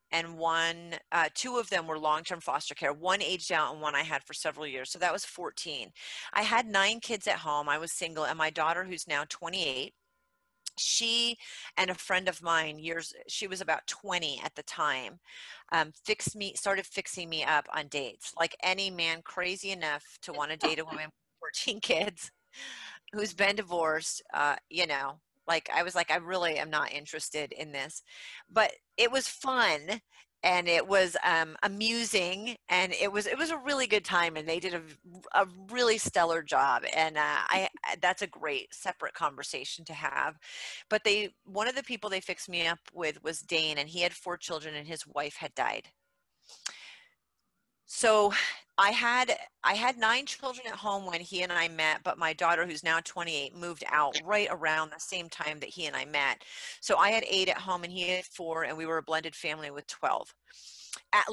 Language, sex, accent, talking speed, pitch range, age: English, female, American, 200 wpm, 155-200 Hz, 30-49